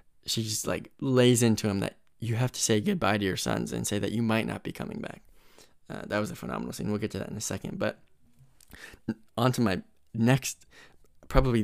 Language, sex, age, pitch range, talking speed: English, male, 20-39, 105-125 Hz, 215 wpm